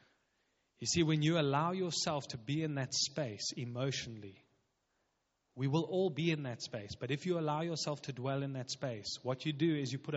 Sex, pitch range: male, 125-155 Hz